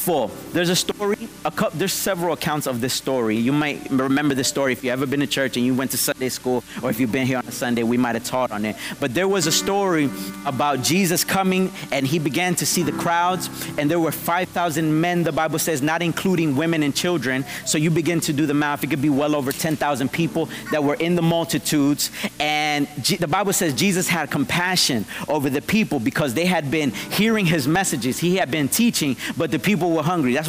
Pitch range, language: 140-180 Hz, English